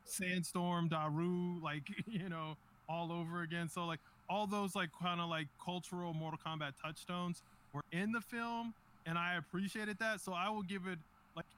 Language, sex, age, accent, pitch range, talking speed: English, male, 20-39, American, 150-175 Hz, 175 wpm